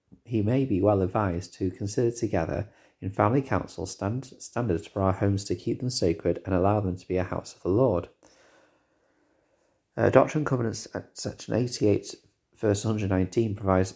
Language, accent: English, British